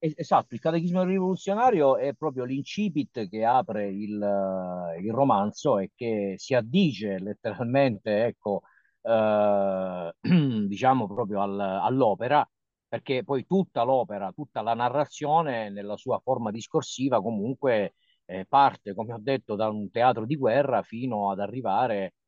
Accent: native